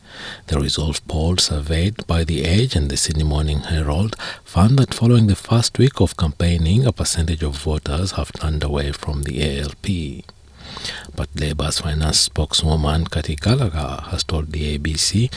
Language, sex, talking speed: English, male, 155 wpm